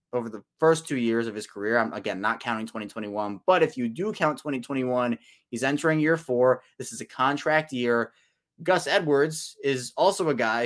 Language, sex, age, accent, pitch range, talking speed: English, male, 20-39, American, 120-150 Hz, 190 wpm